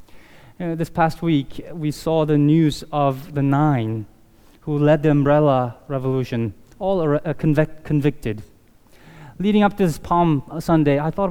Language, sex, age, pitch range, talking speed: English, male, 20-39, 155-235 Hz, 145 wpm